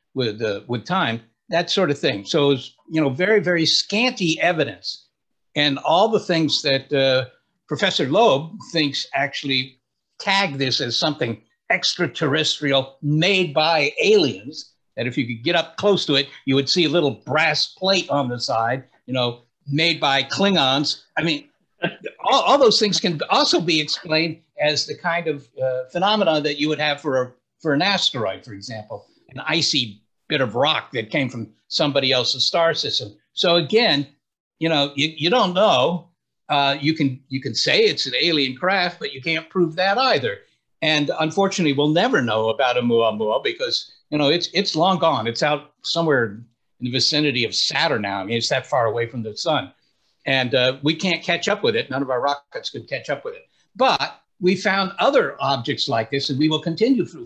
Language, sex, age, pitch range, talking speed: Urdu, male, 60-79, 130-175 Hz, 190 wpm